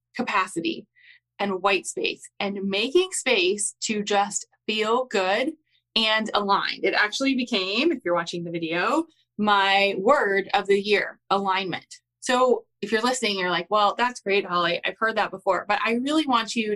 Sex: female